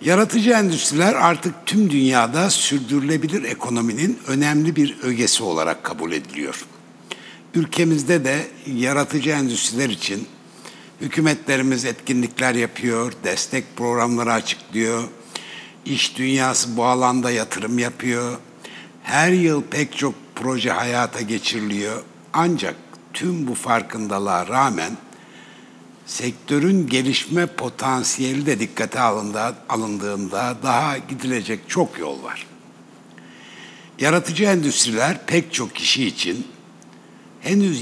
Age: 60-79